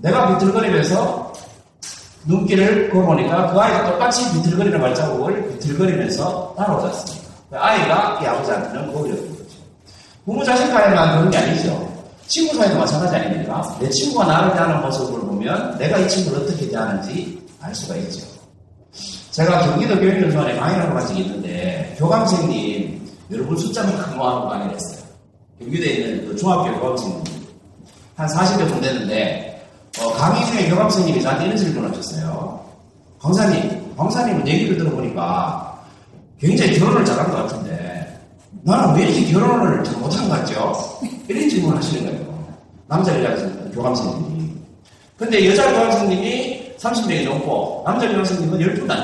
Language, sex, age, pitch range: Korean, male, 40-59, 165-205 Hz